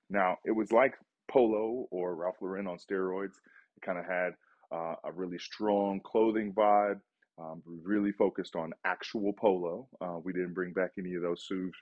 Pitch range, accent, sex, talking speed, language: 90-110 Hz, American, male, 175 wpm, English